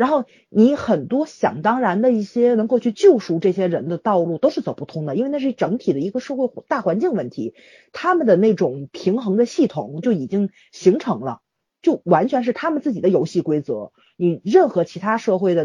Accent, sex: native, female